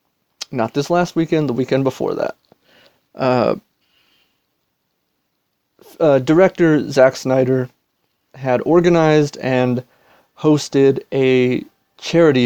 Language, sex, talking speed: English, male, 90 wpm